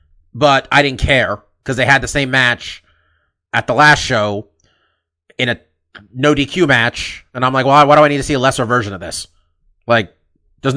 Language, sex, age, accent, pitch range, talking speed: English, male, 30-49, American, 105-140 Hz, 195 wpm